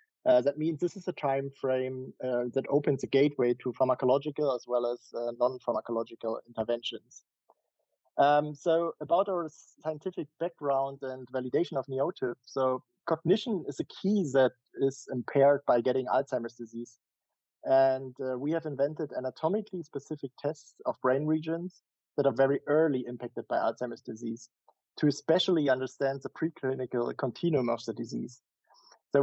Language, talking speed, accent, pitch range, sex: English, 150 wpm, German, 130-155 Hz, male